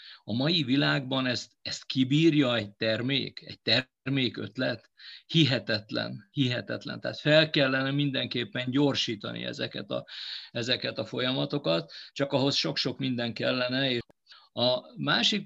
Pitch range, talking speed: 130-160 Hz, 115 wpm